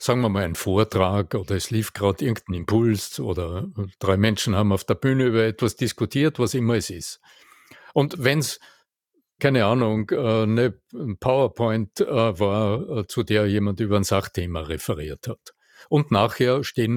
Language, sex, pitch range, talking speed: German, male, 100-120 Hz, 155 wpm